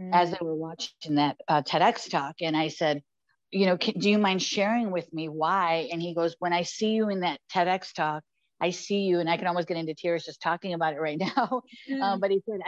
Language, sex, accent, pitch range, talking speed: English, female, American, 155-185 Hz, 245 wpm